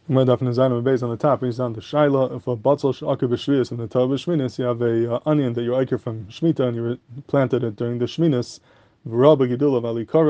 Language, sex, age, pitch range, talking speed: English, male, 20-39, 120-145 Hz, 250 wpm